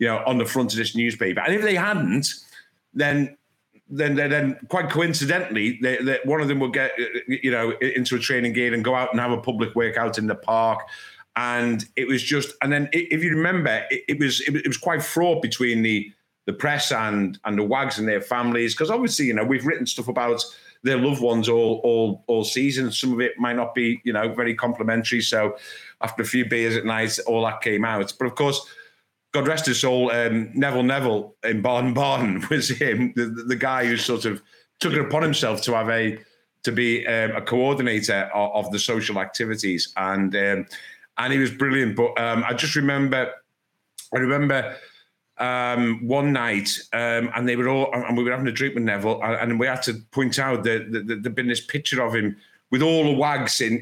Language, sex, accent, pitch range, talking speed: English, male, British, 115-140 Hz, 215 wpm